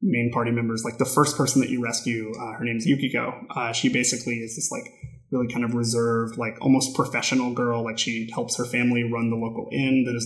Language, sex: English, male